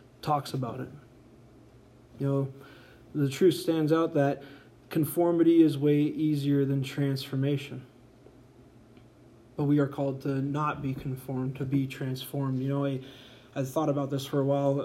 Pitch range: 130-145 Hz